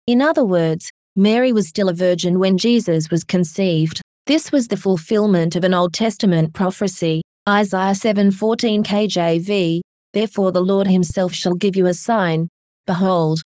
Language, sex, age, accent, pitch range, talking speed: English, female, 30-49, Australian, 175-210 Hz, 150 wpm